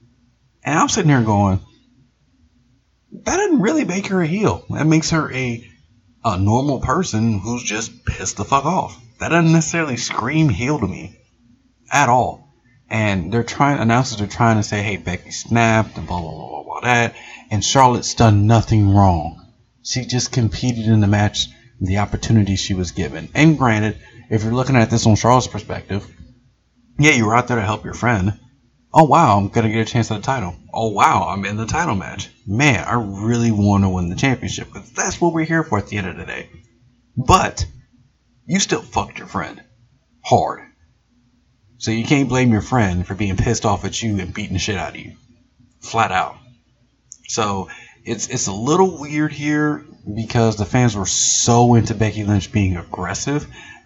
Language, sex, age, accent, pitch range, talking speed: English, male, 30-49, American, 105-125 Hz, 190 wpm